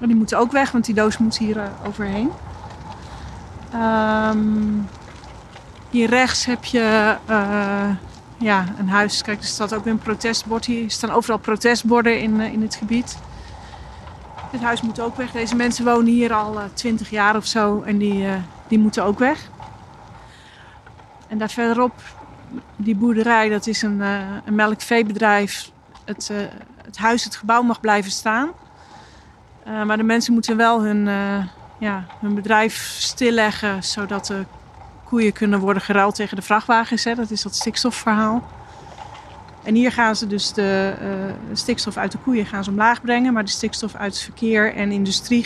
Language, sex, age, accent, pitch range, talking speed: Dutch, female, 40-59, Dutch, 205-230 Hz, 165 wpm